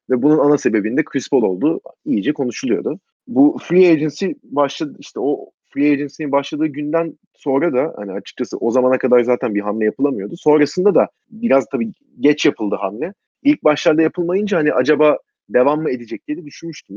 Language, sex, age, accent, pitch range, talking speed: Turkish, male, 30-49, native, 125-165 Hz, 165 wpm